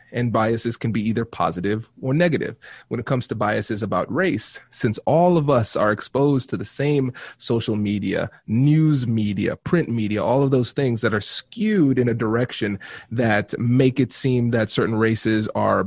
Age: 30-49